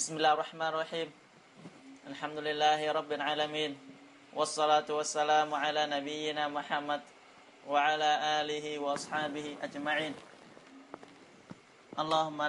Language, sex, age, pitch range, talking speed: Vietnamese, male, 20-39, 135-150 Hz, 85 wpm